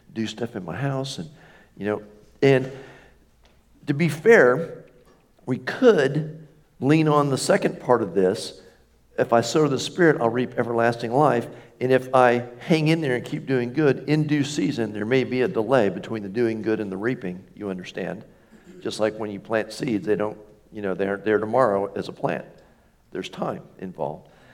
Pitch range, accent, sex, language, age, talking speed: 105-140 Hz, American, male, English, 50-69, 185 wpm